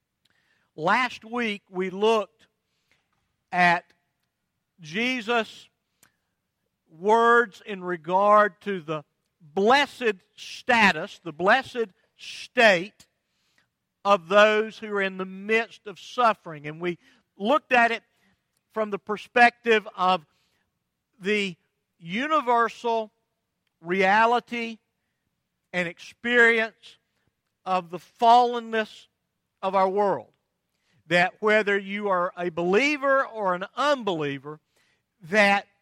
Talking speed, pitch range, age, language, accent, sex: 90 wpm, 180-235 Hz, 50-69, English, American, male